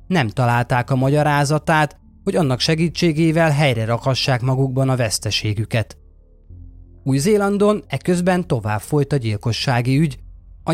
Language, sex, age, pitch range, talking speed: Hungarian, male, 30-49, 110-165 Hz, 110 wpm